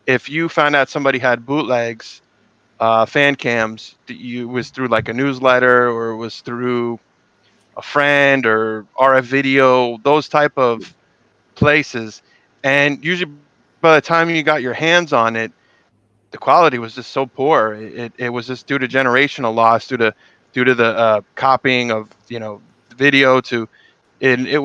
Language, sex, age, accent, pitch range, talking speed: English, male, 20-39, American, 115-140 Hz, 170 wpm